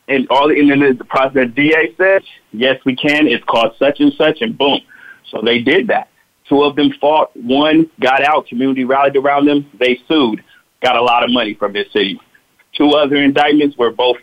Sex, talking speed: male, 205 wpm